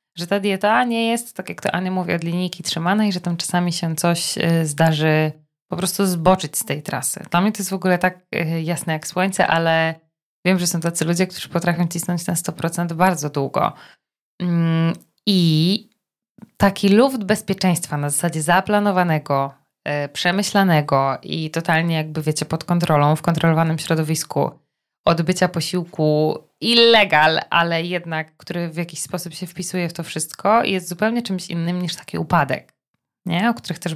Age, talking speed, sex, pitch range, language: 20-39, 160 wpm, female, 165-190 Hz, Polish